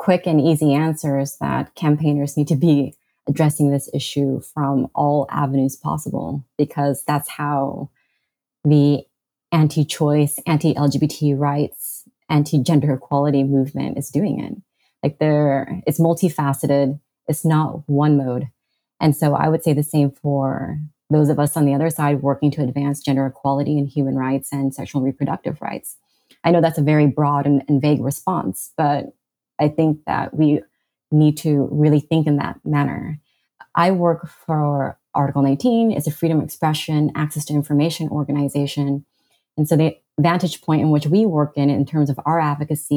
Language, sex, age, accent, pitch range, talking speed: English, female, 20-39, American, 140-155 Hz, 160 wpm